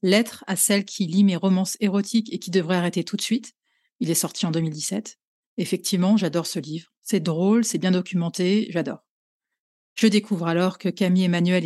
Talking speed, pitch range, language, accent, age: 180 wpm, 180-220 Hz, French, French, 30-49